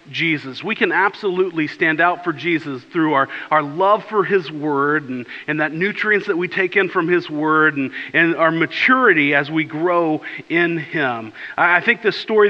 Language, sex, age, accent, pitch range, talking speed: English, male, 40-59, American, 145-175 Hz, 190 wpm